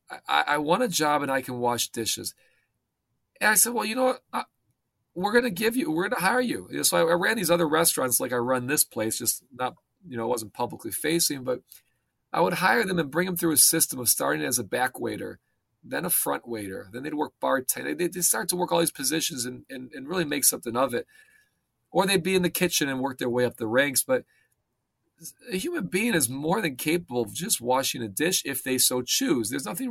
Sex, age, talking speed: male, 40-59, 235 wpm